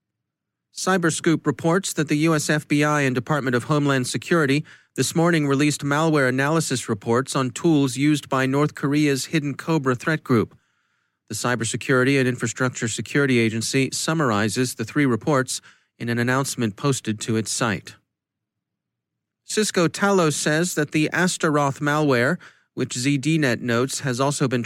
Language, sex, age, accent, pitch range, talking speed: English, male, 40-59, American, 125-155 Hz, 140 wpm